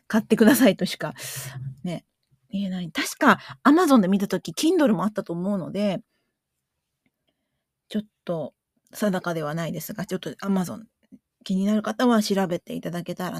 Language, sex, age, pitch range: Japanese, female, 40-59, 175-225 Hz